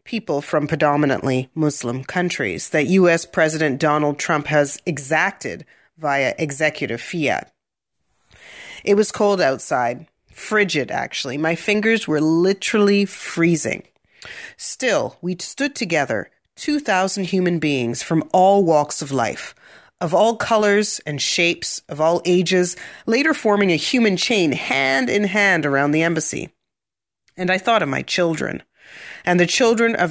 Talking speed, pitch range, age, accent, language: 135 wpm, 150-200 Hz, 40-59, American, English